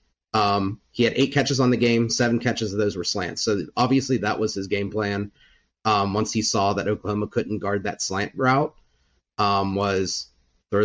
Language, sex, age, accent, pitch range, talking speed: English, male, 30-49, American, 95-105 Hz, 195 wpm